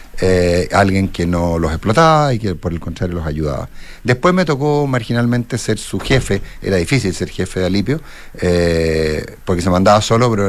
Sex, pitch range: male, 85-110 Hz